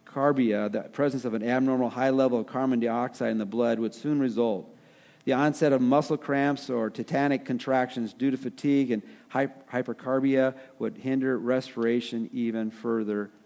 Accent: American